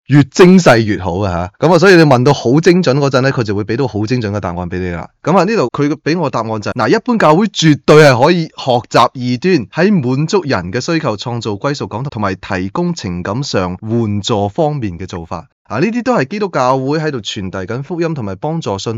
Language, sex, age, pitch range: Chinese, male, 20-39, 95-145 Hz